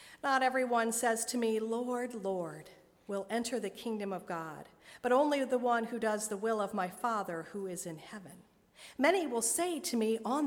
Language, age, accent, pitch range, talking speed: English, 50-69, American, 200-270 Hz, 195 wpm